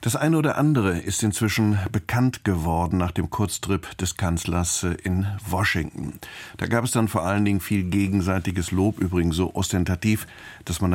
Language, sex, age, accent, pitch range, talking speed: German, male, 50-69, German, 85-105 Hz, 165 wpm